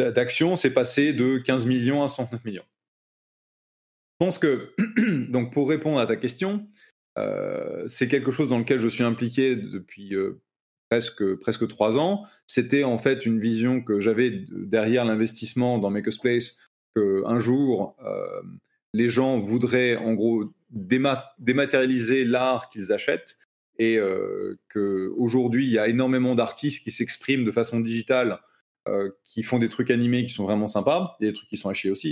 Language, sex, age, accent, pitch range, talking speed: French, male, 30-49, French, 110-135 Hz, 160 wpm